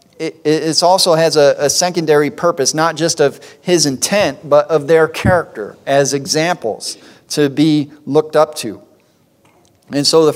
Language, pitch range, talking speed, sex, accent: English, 140-175 Hz, 145 wpm, male, American